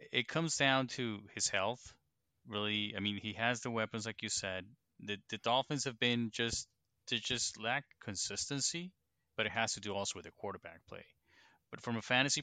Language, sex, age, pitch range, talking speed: English, male, 30-49, 100-125 Hz, 195 wpm